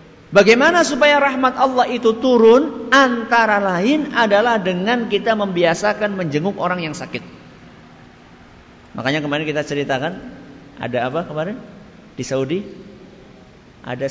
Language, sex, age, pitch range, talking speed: Malay, male, 50-69, 160-245 Hz, 110 wpm